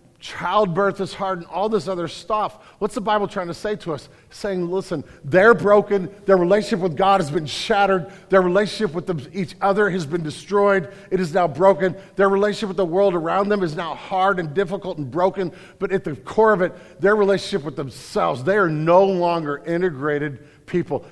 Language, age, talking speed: English, 50-69, 195 wpm